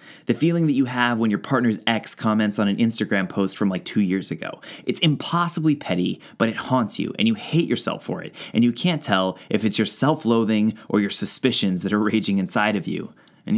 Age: 20-39